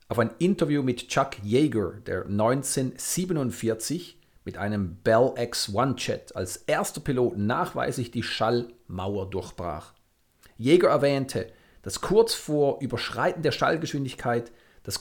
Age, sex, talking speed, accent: 40-59, male, 120 wpm, German